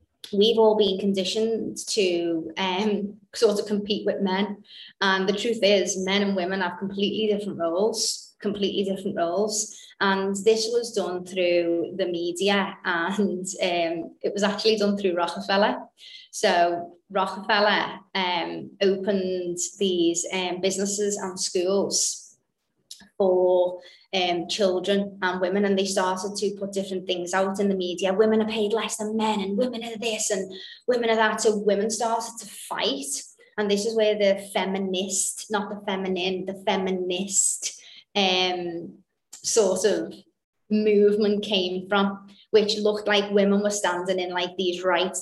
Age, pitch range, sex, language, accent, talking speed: 20-39, 180-205 Hz, female, English, British, 145 wpm